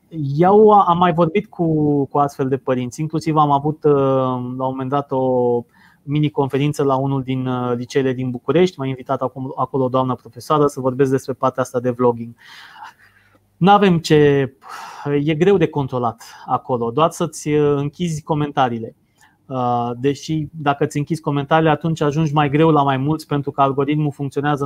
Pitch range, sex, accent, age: 135-160 Hz, male, native, 20-39